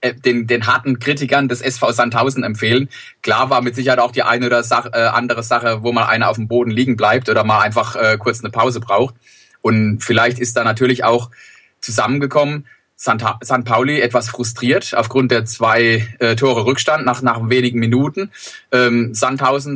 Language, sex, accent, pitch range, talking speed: German, male, German, 120-135 Hz, 180 wpm